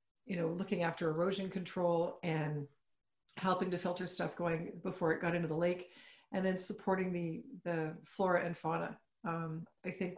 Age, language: 40-59, English